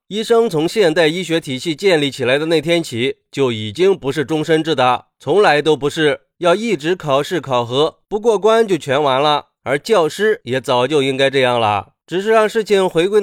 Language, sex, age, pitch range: Chinese, male, 30-49, 140-215 Hz